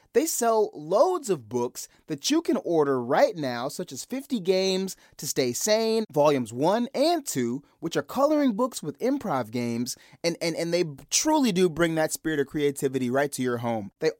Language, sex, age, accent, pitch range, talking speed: English, male, 30-49, American, 135-205 Hz, 190 wpm